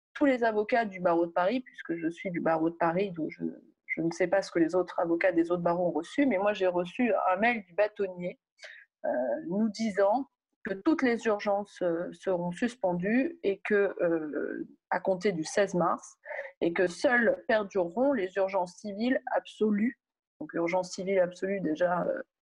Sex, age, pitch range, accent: female, 30-49, 180-250 Hz, French